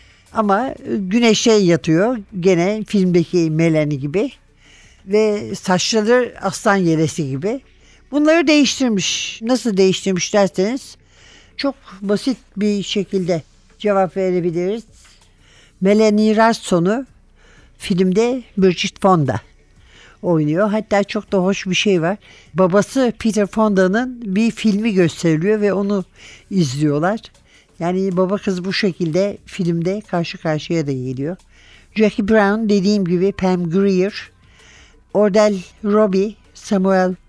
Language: Turkish